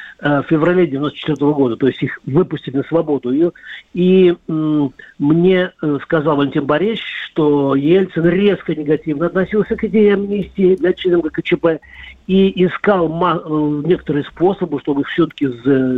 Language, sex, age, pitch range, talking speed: Russian, male, 50-69, 140-175 Hz, 130 wpm